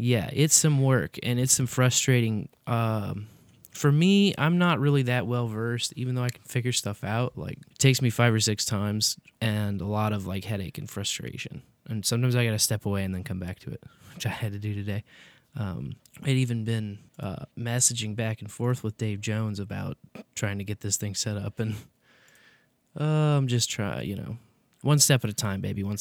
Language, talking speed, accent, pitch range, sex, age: English, 210 wpm, American, 110-135 Hz, male, 20-39